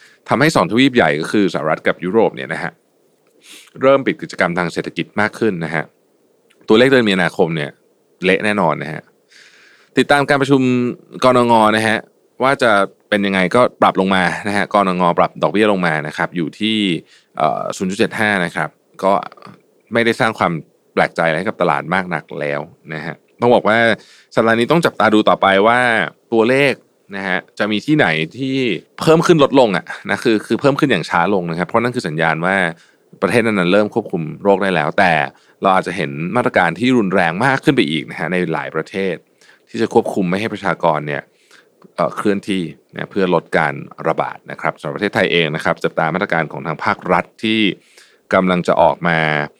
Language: Thai